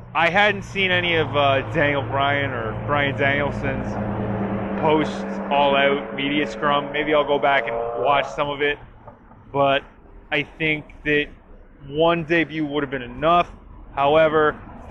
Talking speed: 145 wpm